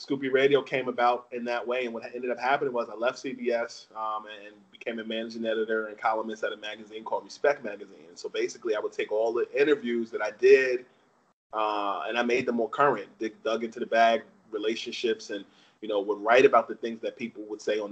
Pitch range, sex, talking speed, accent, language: 110-135 Hz, male, 225 wpm, American, English